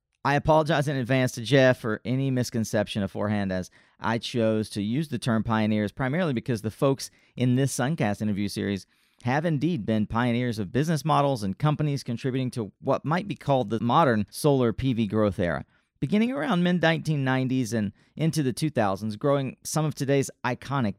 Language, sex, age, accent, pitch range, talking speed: English, male, 40-59, American, 105-135 Hz, 170 wpm